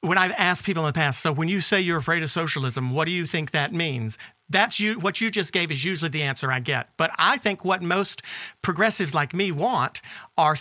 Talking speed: 245 wpm